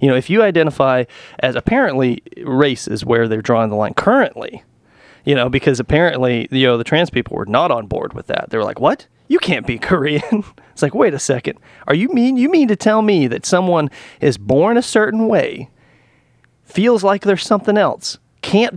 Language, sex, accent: English, male, American